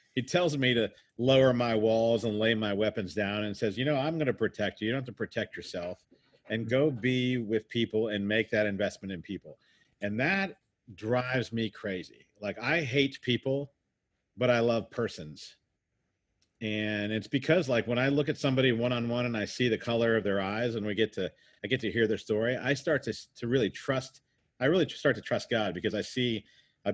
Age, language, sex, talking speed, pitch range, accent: 50-69, English, male, 210 wpm, 105-125 Hz, American